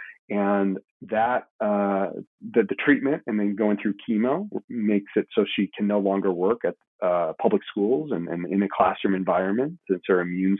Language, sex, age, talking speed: English, male, 40-59, 180 wpm